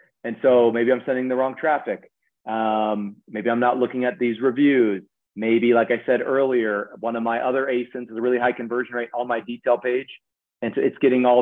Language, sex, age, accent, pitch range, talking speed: English, male, 30-49, American, 110-135 Hz, 215 wpm